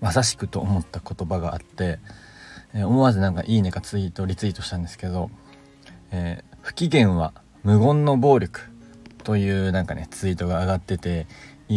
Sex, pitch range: male, 90-120 Hz